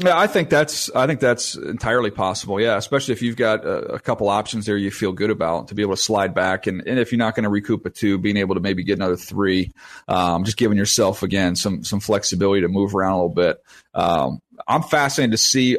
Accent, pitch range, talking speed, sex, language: American, 105-135 Hz, 245 wpm, male, English